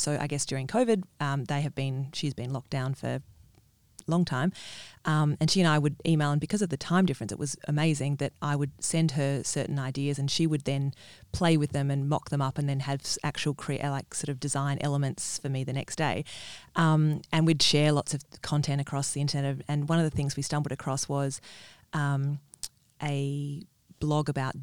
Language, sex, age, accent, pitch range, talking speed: English, female, 30-49, Australian, 140-155 Hz, 215 wpm